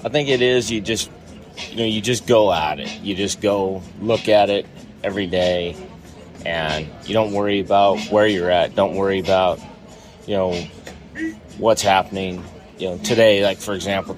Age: 30-49